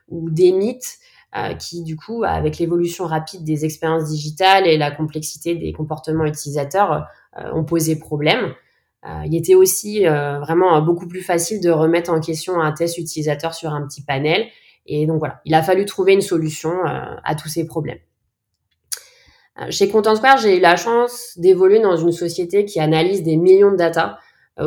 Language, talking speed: French, 185 wpm